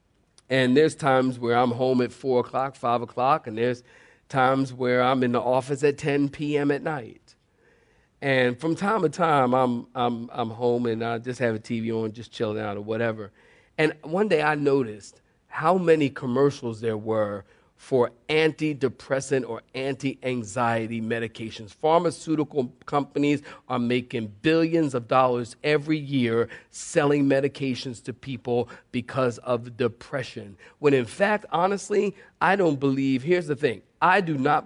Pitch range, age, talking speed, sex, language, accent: 120-155 Hz, 40-59, 155 wpm, male, English, American